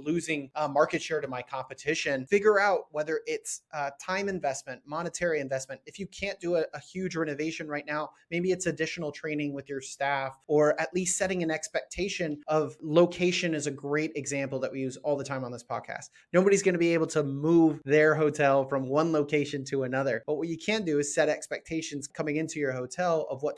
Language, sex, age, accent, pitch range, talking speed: English, male, 30-49, American, 135-165 Hz, 210 wpm